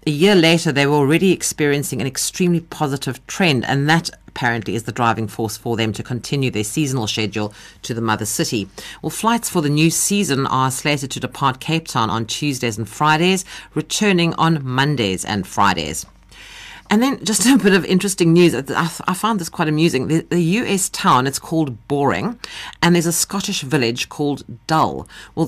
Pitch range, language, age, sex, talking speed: 125-175 Hz, English, 50-69, female, 185 wpm